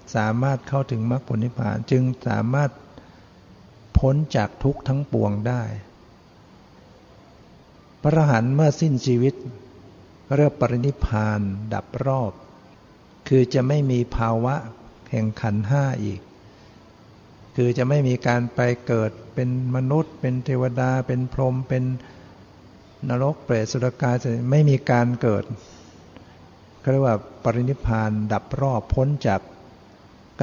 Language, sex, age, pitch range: Thai, male, 60-79, 105-130 Hz